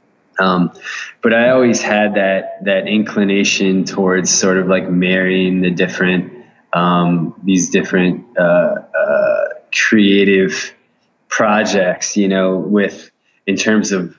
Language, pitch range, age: English, 90-105 Hz, 20-39